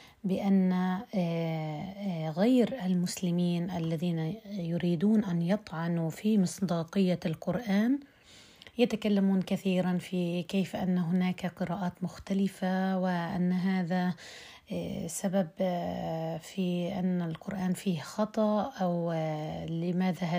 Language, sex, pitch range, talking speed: Arabic, female, 180-210 Hz, 80 wpm